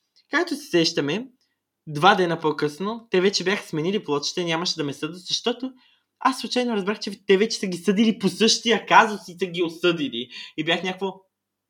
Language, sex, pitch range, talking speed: Bulgarian, male, 130-180 Hz, 180 wpm